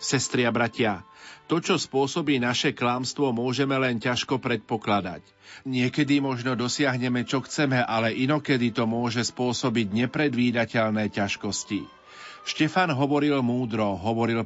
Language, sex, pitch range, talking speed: Slovak, male, 110-135 Hz, 110 wpm